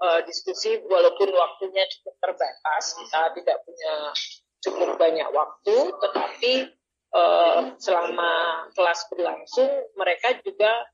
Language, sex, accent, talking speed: Indonesian, female, native, 100 wpm